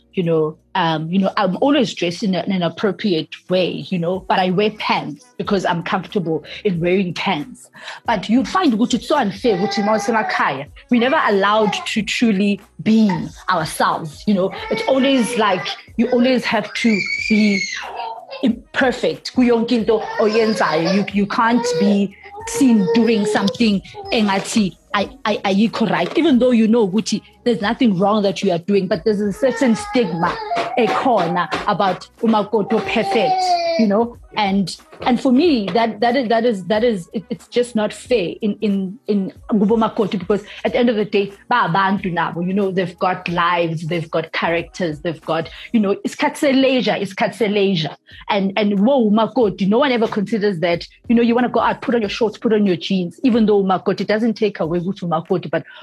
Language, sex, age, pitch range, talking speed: English, female, 30-49, 190-230 Hz, 170 wpm